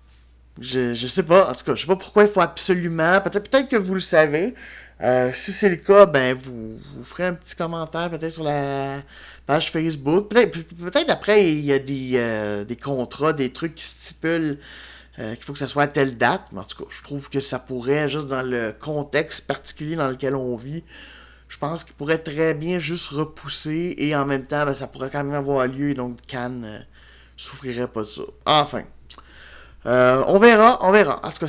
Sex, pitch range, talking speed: male, 125-170 Hz, 215 wpm